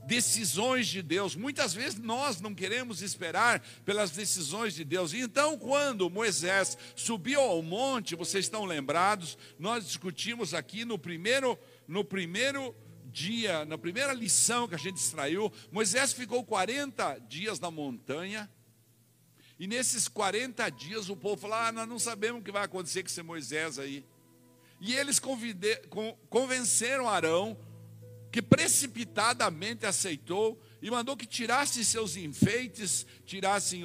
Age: 60-79